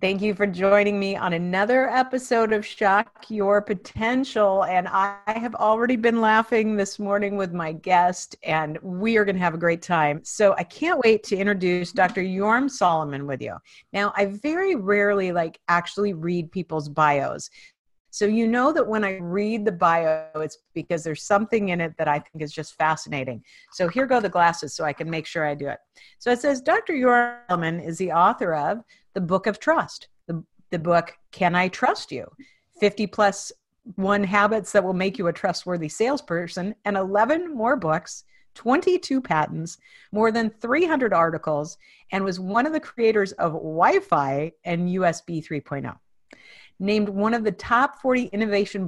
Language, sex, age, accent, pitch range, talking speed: English, female, 50-69, American, 170-220 Hz, 180 wpm